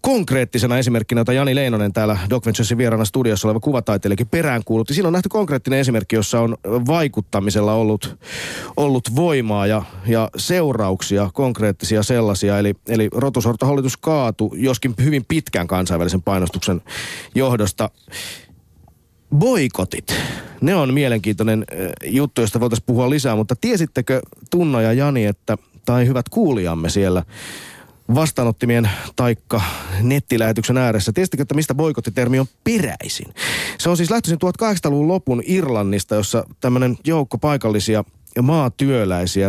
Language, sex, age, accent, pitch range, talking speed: Finnish, male, 30-49, native, 105-135 Hz, 120 wpm